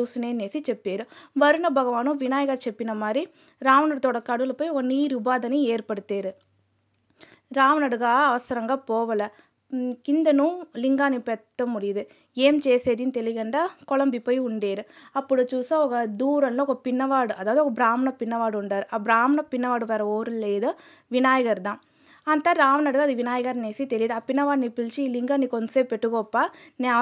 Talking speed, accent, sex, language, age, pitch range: 120 wpm, native, female, Telugu, 20-39, 235-285 Hz